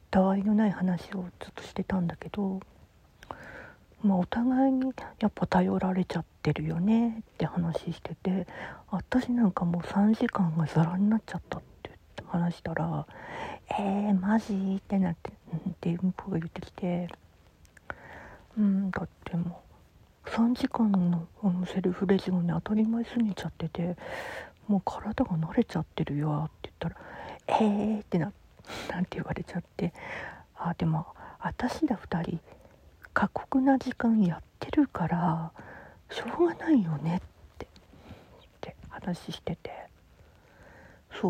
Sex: female